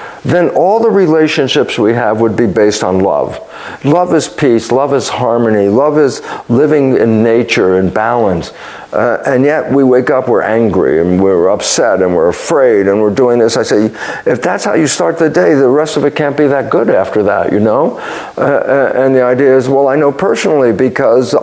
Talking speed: 205 wpm